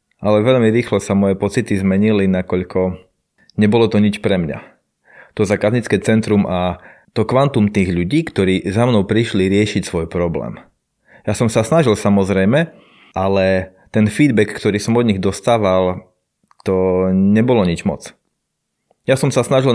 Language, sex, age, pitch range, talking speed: Slovak, male, 30-49, 95-115 Hz, 150 wpm